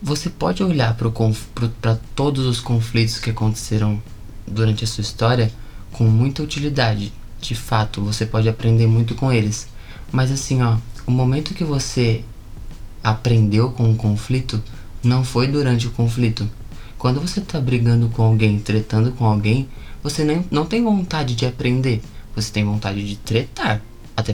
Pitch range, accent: 110-135 Hz, Brazilian